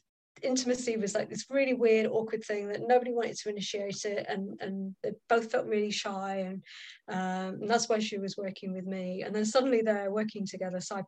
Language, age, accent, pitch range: English, 30-49, British, 195-250 Hz